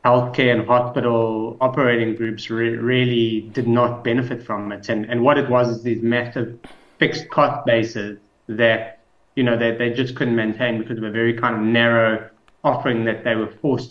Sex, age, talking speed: male, 30-49, 190 wpm